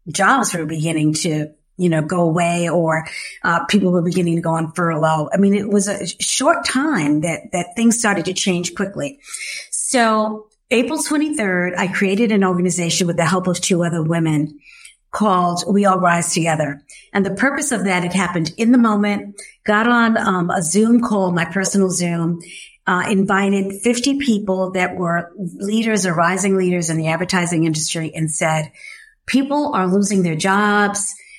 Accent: American